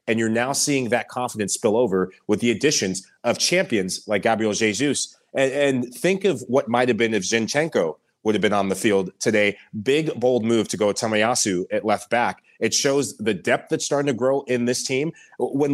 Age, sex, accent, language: 30-49, male, American, English